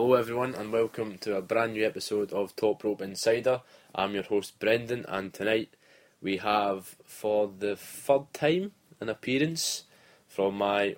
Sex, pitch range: male, 95-115 Hz